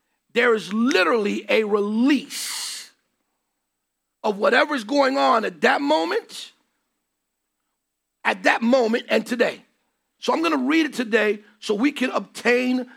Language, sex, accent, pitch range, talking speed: English, male, American, 210-275 Hz, 135 wpm